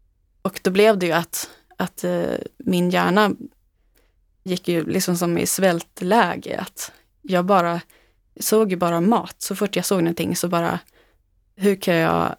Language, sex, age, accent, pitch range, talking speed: Swedish, female, 20-39, native, 165-210 Hz, 150 wpm